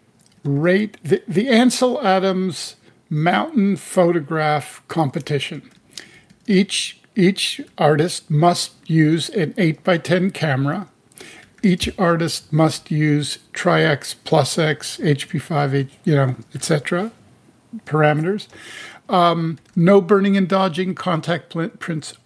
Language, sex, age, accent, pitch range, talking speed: English, male, 50-69, American, 145-190 Hz, 100 wpm